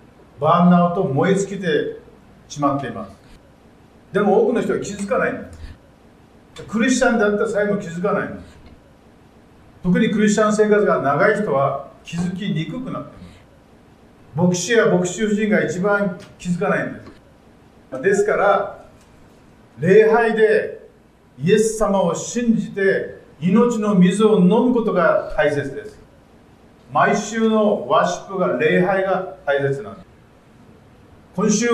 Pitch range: 160-215 Hz